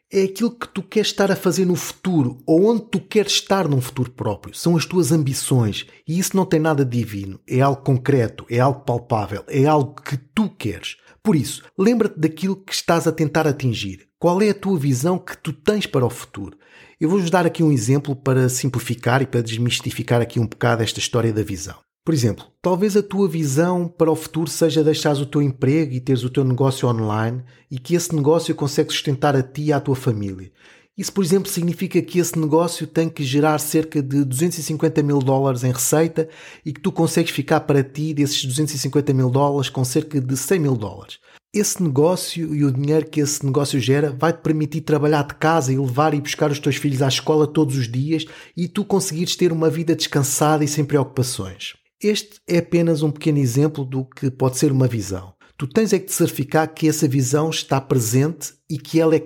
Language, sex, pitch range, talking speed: Portuguese, male, 130-165 Hz, 210 wpm